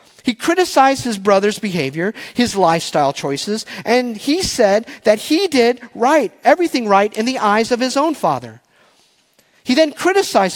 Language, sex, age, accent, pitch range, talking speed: English, male, 40-59, American, 160-240 Hz, 155 wpm